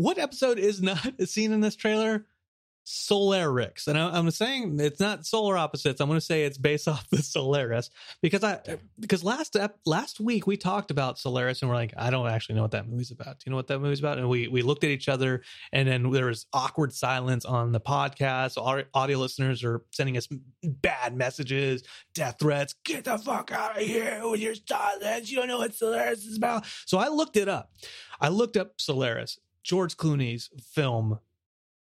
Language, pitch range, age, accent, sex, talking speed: English, 130-205 Hz, 30-49, American, male, 200 wpm